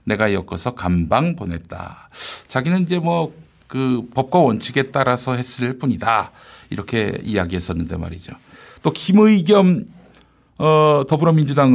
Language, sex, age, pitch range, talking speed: English, male, 60-79, 95-140 Hz, 95 wpm